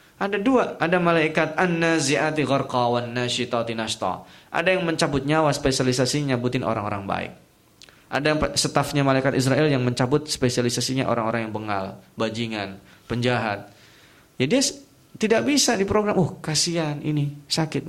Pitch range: 120-155 Hz